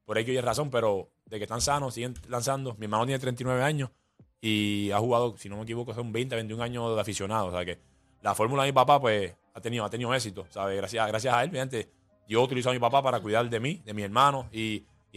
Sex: male